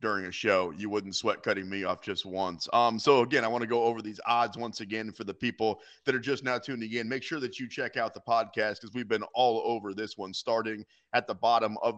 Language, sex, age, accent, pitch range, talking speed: English, male, 30-49, American, 105-125 Hz, 260 wpm